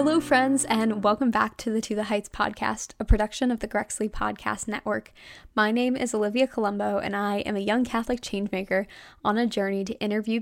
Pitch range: 200-240 Hz